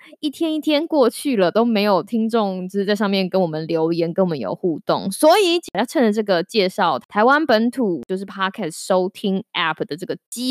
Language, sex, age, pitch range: Chinese, female, 20-39, 190-270 Hz